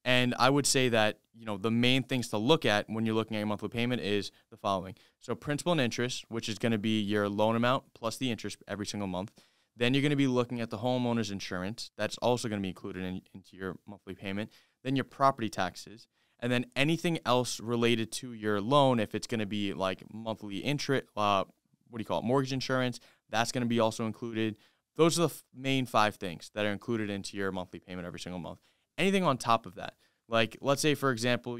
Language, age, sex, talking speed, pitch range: English, 20-39, male, 230 wpm, 105-130 Hz